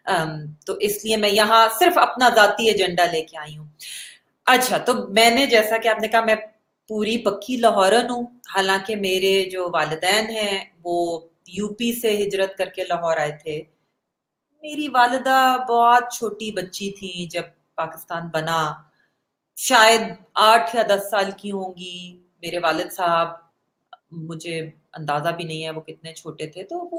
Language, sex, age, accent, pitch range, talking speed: English, female, 30-49, Indian, 170-220 Hz, 115 wpm